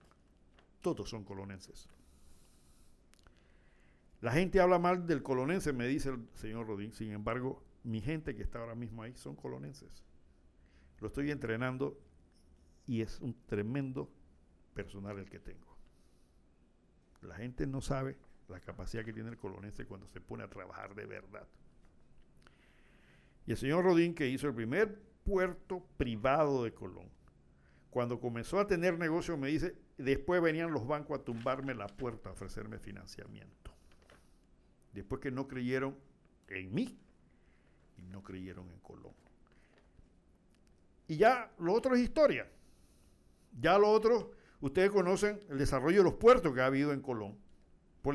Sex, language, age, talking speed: male, Spanish, 60-79, 145 wpm